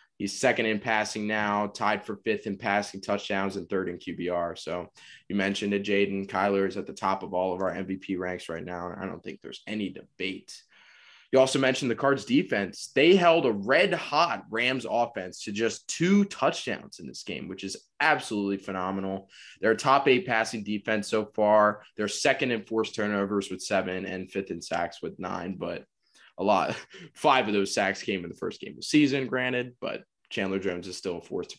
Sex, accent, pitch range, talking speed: male, American, 105-135 Hz, 205 wpm